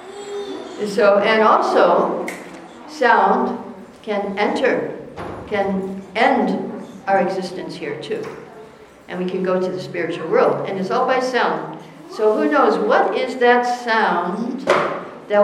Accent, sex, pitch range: American, female, 190-235 Hz